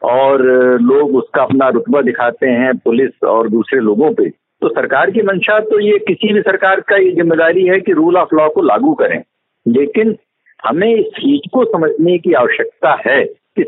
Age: 50-69